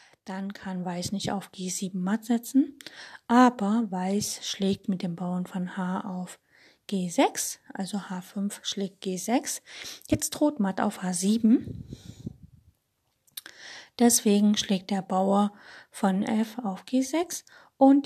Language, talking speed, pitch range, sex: German, 120 wpm, 190-230 Hz, female